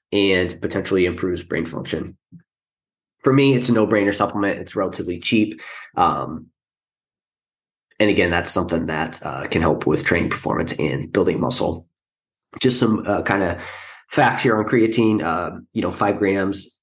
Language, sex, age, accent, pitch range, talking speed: English, male, 20-39, American, 90-110 Hz, 150 wpm